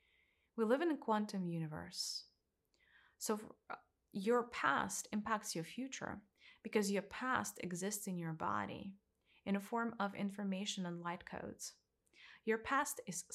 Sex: female